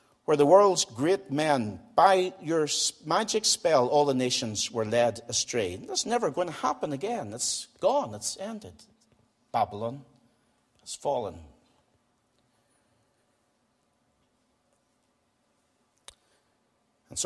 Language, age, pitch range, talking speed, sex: English, 50-69, 110-135 Hz, 100 wpm, male